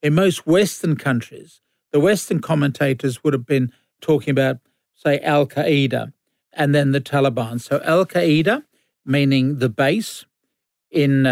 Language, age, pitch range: English, 50-69, 135-155 Hz